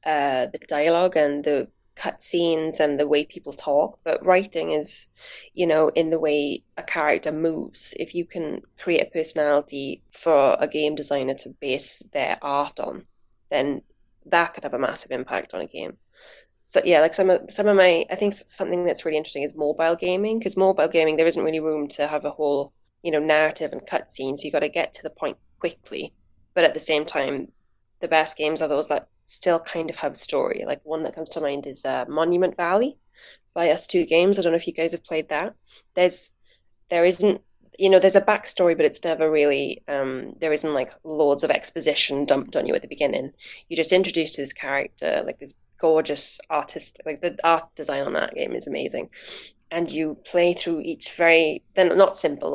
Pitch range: 150-175 Hz